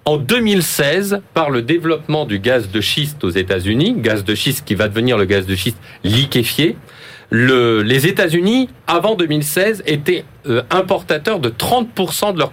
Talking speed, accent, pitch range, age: 165 wpm, French, 120-175 Hz, 40-59